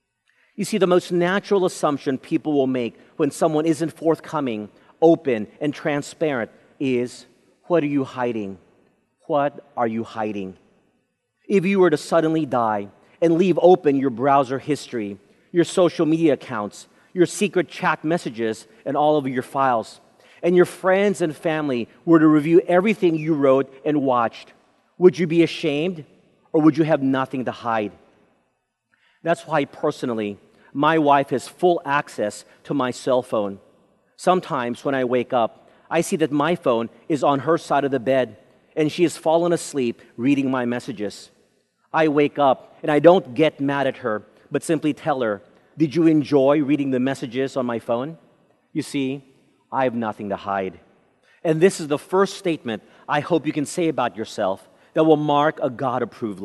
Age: 40-59